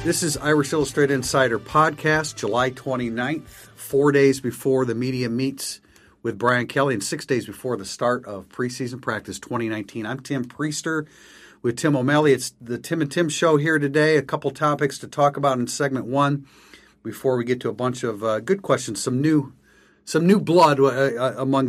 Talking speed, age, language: 185 wpm, 50-69, English